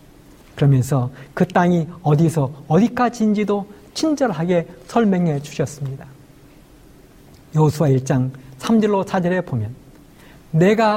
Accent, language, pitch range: native, Korean, 145-215 Hz